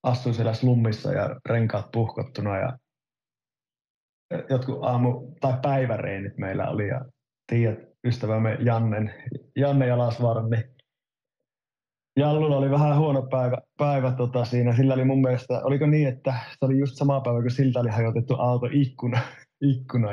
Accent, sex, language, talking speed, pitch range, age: native, male, Finnish, 135 wpm, 120-140 Hz, 30-49